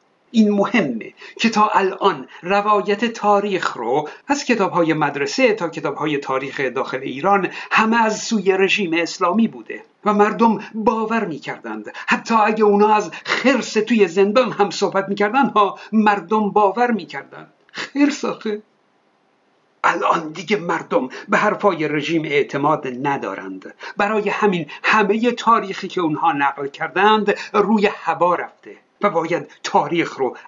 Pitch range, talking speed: 180-225 Hz, 125 wpm